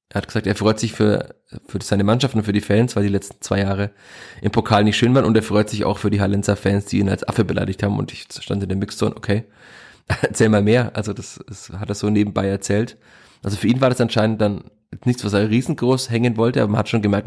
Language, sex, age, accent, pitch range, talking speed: German, male, 20-39, German, 100-110 Hz, 260 wpm